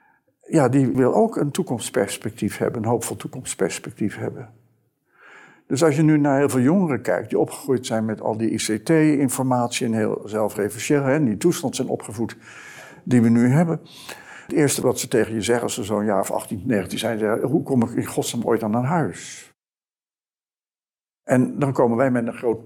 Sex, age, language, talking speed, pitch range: male, 60-79, Dutch, 185 wpm, 110-135 Hz